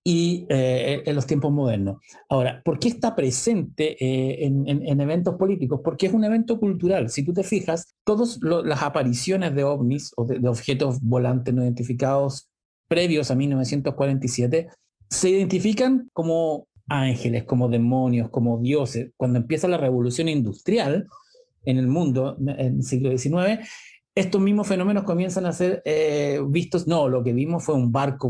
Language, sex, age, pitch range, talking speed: Spanish, male, 50-69, 120-170 Hz, 160 wpm